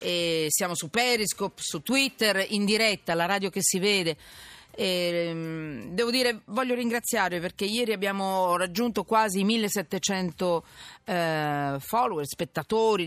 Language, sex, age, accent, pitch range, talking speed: Italian, female, 40-59, native, 155-220 Hz, 115 wpm